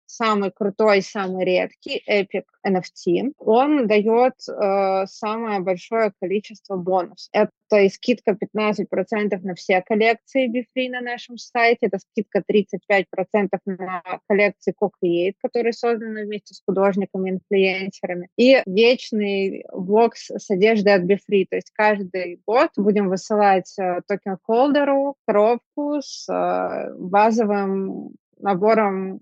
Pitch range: 190-230 Hz